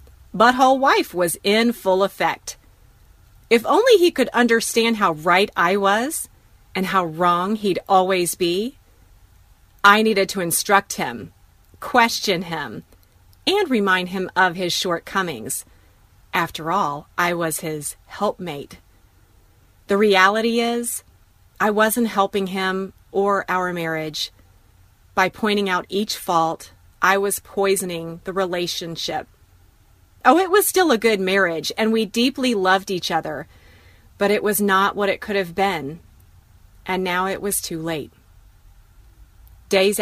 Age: 30-49